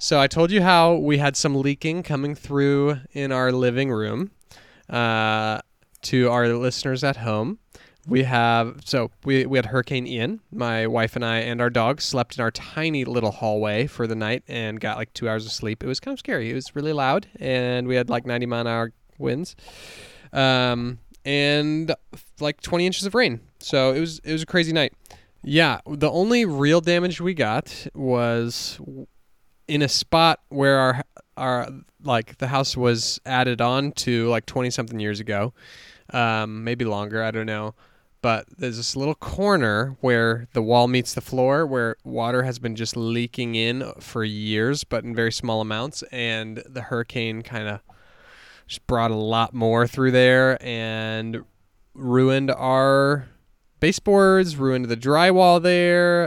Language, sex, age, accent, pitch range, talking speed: English, male, 20-39, American, 115-140 Hz, 175 wpm